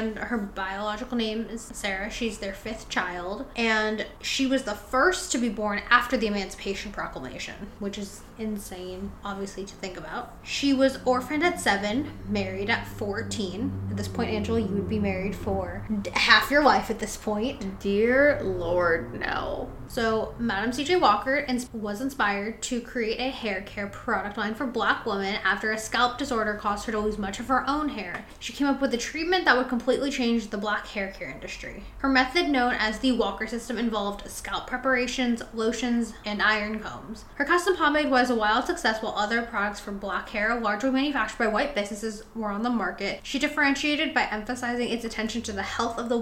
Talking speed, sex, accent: 190 wpm, female, American